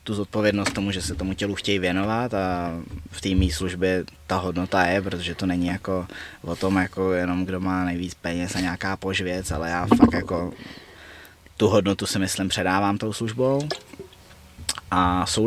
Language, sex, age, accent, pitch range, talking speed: Czech, male, 20-39, native, 85-100 Hz, 175 wpm